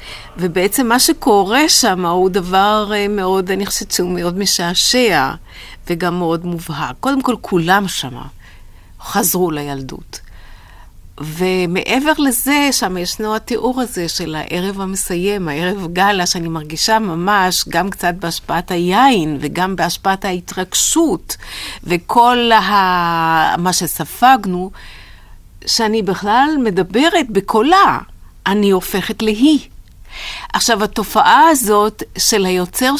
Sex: female